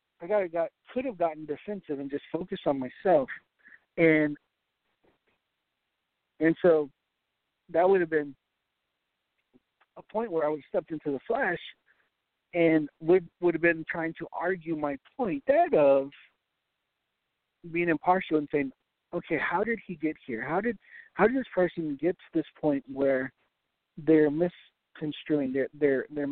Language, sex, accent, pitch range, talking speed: English, male, American, 145-180 Hz, 155 wpm